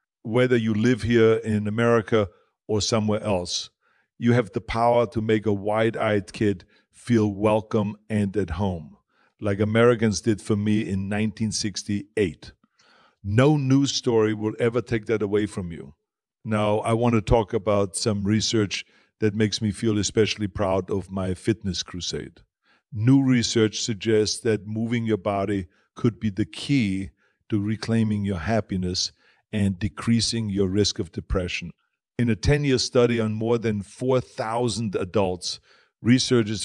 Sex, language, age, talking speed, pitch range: male, English, 50-69, 145 wpm, 100-115 Hz